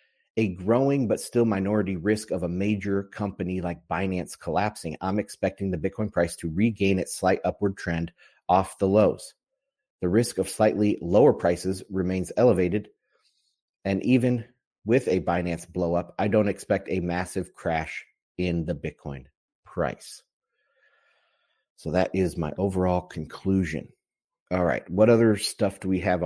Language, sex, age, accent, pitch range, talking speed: English, male, 30-49, American, 90-105 Hz, 150 wpm